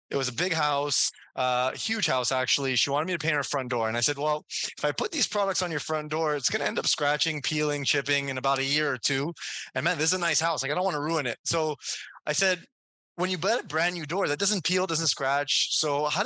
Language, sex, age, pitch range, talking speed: English, male, 20-39, 135-170 Hz, 275 wpm